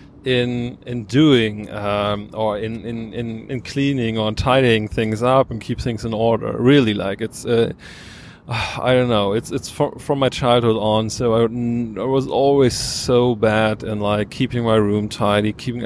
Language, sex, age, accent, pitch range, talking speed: English, male, 30-49, German, 110-135 Hz, 180 wpm